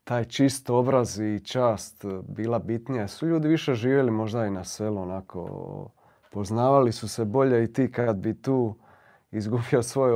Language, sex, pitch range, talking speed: Croatian, male, 100-125 Hz, 160 wpm